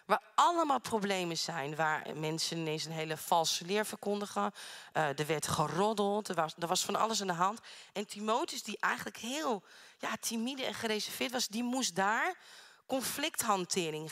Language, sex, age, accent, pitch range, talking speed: Dutch, female, 40-59, Dutch, 175-230 Hz, 155 wpm